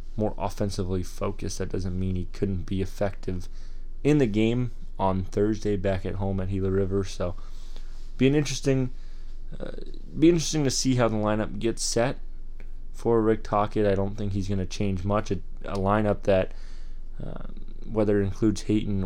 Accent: American